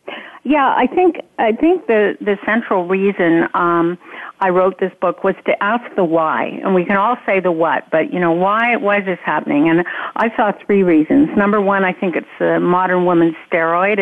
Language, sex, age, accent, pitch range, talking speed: English, female, 50-69, American, 175-225 Hz, 205 wpm